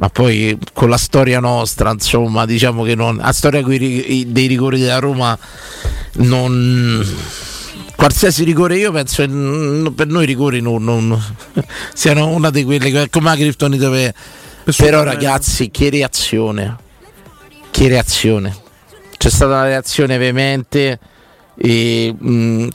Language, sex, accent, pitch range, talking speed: English, male, Italian, 120-150 Hz, 120 wpm